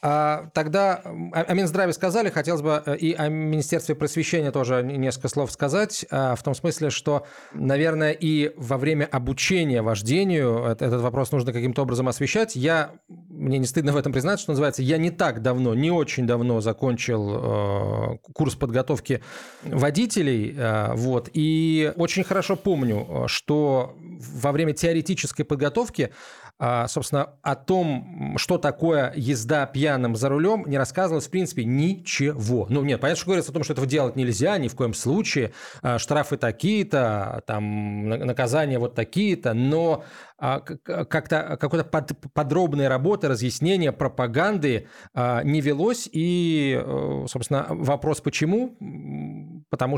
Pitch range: 125-155 Hz